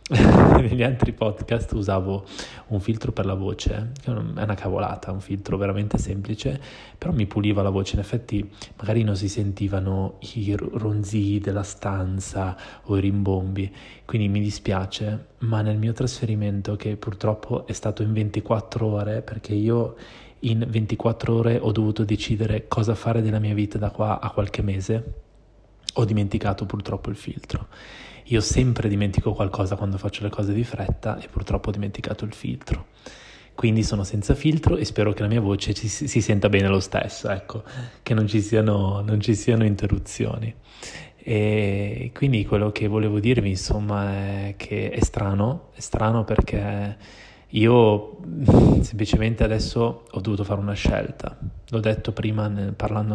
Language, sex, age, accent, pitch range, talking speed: Italian, male, 20-39, native, 100-115 Hz, 155 wpm